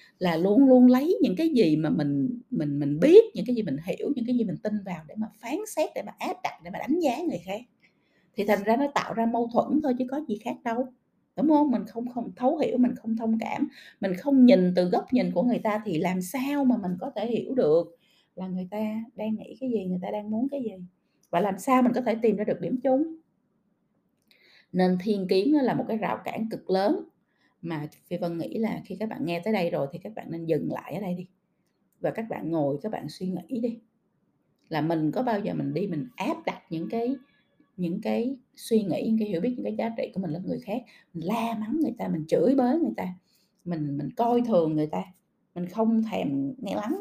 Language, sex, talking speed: Vietnamese, female, 245 wpm